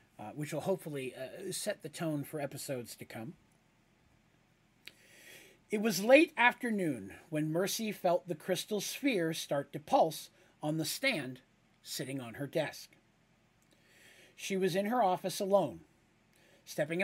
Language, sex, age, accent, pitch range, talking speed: English, male, 40-59, American, 140-190 Hz, 135 wpm